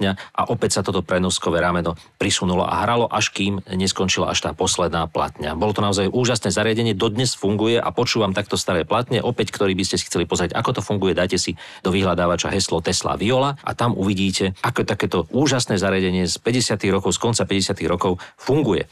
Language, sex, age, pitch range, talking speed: Slovak, male, 40-59, 90-110 Hz, 190 wpm